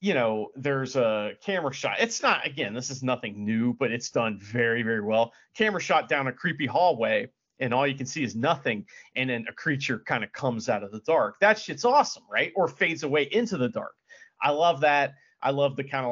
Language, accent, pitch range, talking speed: English, American, 130-180 Hz, 225 wpm